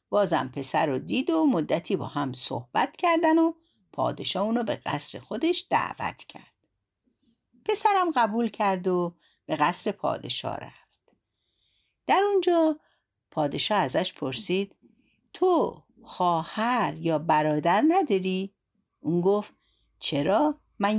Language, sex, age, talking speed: Persian, female, 60-79, 115 wpm